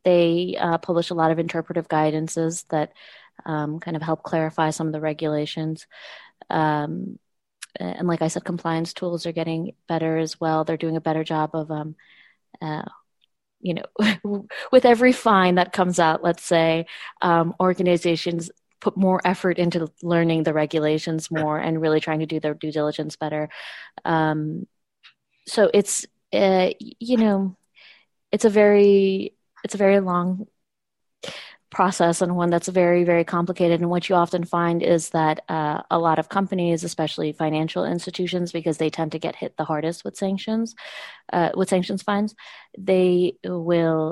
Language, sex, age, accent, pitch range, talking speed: English, female, 20-39, American, 155-185 Hz, 160 wpm